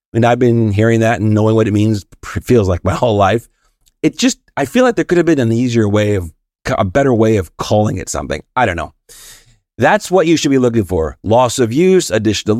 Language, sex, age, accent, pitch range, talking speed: English, male, 30-49, American, 100-135 Hz, 240 wpm